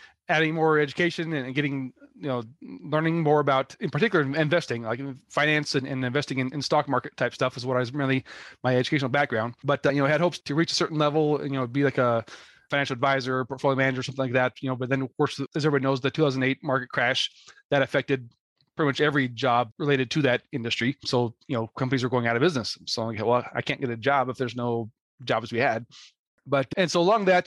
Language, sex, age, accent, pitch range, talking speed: English, male, 30-49, American, 130-150 Hz, 235 wpm